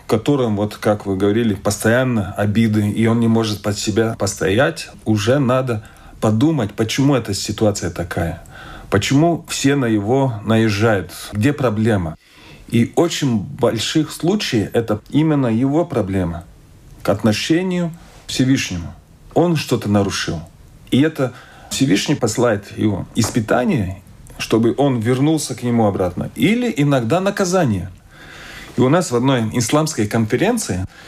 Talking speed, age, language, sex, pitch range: 125 wpm, 40-59, Russian, male, 105-140 Hz